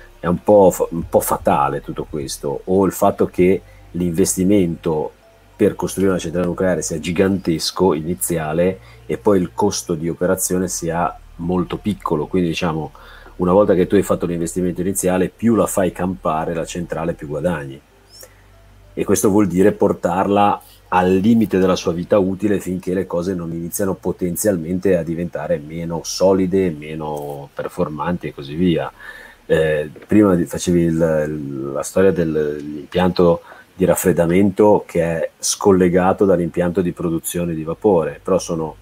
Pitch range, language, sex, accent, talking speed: 80-95 Hz, Italian, male, native, 145 wpm